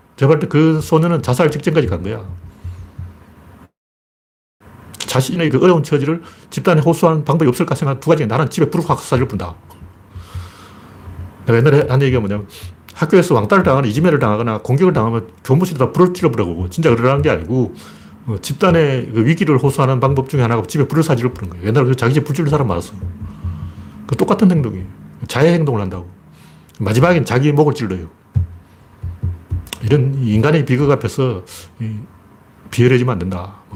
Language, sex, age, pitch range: Korean, male, 40-59, 95-145 Hz